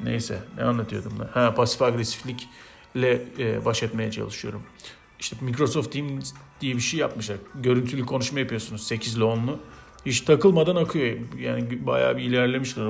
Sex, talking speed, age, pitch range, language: male, 145 wpm, 40-59, 115-140 Hz, Turkish